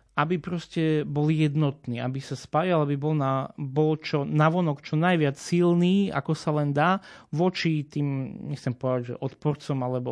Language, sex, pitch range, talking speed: Slovak, male, 130-160 Hz, 155 wpm